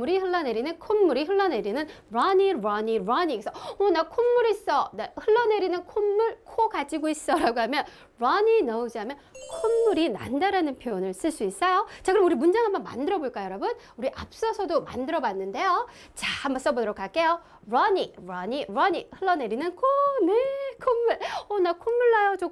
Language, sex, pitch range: Korean, female, 260-400 Hz